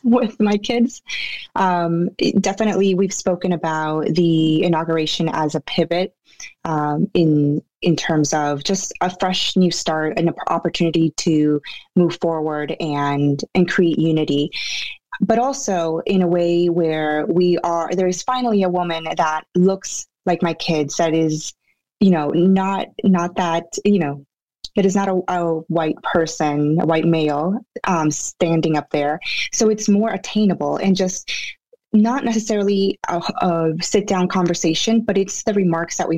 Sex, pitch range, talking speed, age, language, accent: female, 160-195 Hz, 155 wpm, 20-39, English, American